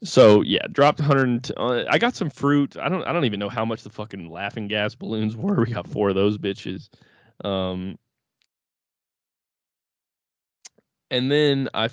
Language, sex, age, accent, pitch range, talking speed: English, male, 20-39, American, 100-125 Hz, 160 wpm